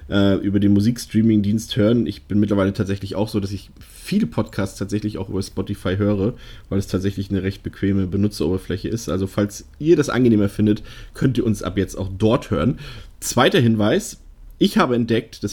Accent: German